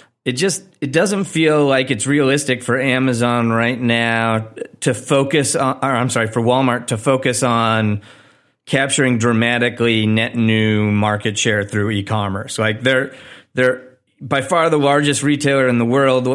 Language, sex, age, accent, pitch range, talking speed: English, male, 30-49, American, 115-135 Hz, 155 wpm